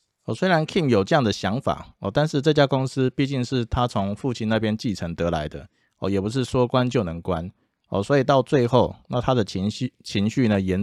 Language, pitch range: Chinese, 100-130 Hz